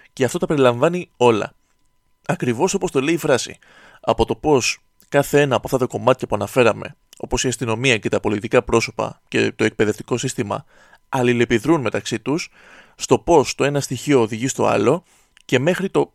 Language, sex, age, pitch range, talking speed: Greek, male, 20-39, 120-165 Hz, 175 wpm